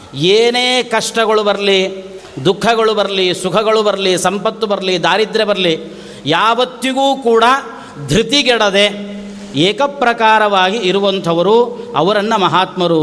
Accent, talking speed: native, 85 wpm